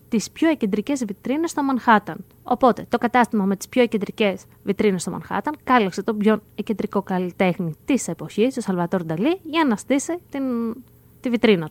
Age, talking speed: 20-39, 165 wpm